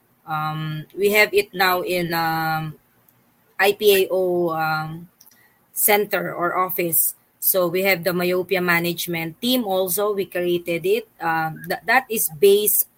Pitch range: 165-195 Hz